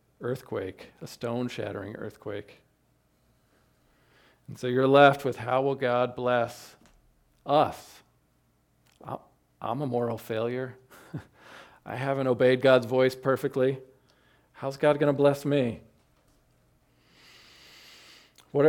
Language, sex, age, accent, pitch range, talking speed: English, male, 40-59, American, 110-135 Hz, 100 wpm